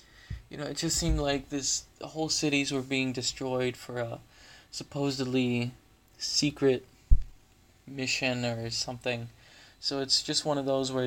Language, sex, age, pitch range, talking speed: English, male, 20-39, 120-140 Hz, 145 wpm